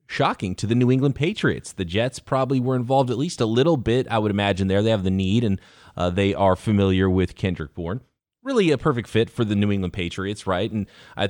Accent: American